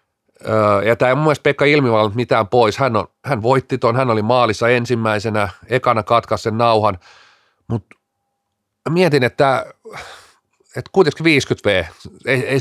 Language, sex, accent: Finnish, male, native